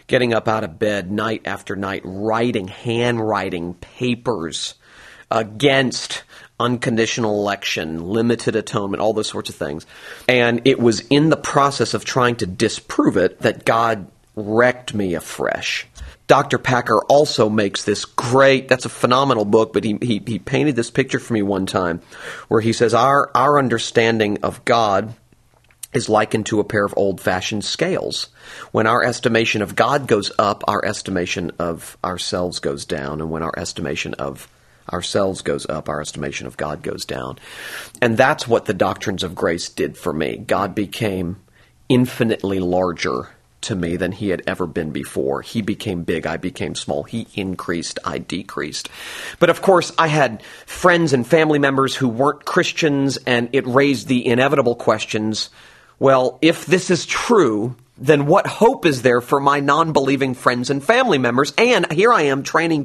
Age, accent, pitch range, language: 40-59, American, 100-140 Hz, English